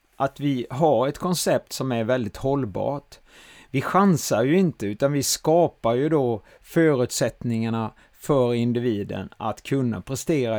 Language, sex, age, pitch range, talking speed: Swedish, male, 30-49, 120-155 Hz, 135 wpm